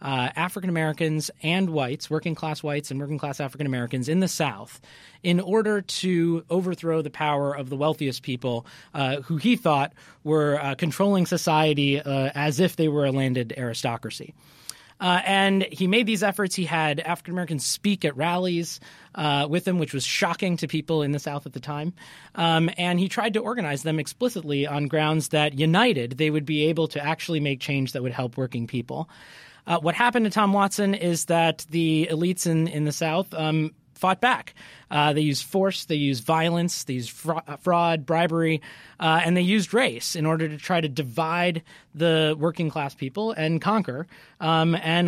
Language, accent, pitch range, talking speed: English, American, 145-175 Hz, 180 wpm